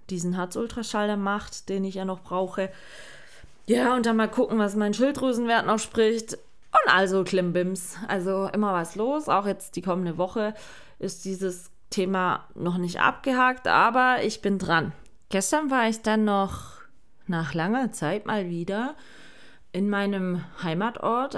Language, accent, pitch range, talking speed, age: German, German, 175-220 Hz, 150 wpm, 20-39